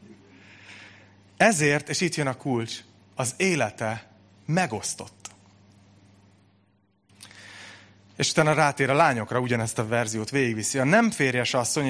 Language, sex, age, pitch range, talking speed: Hungarian, male, 30-49, 110-165 Hz, 110 wpm